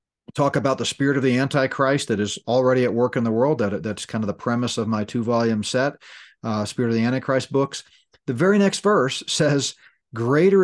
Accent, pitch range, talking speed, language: American, 115-140 Hz, 205 wpm, English